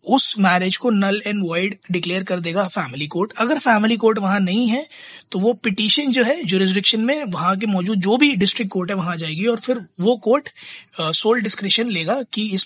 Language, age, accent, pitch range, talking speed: Hindi, 20-39, native, 180-230 Hz, 205 wpm